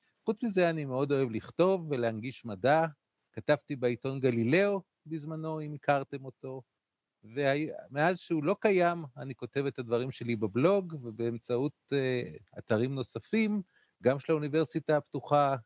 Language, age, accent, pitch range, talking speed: Hebrew, 30-49, native, 135-205 Hz, 125 wpm